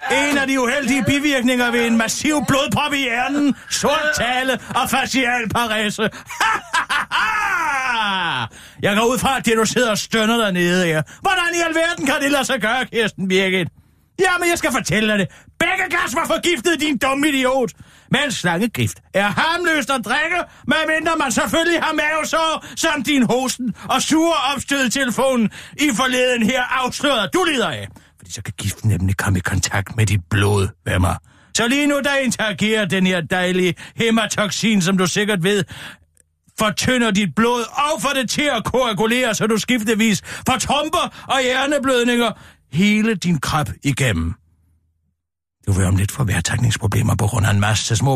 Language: Danish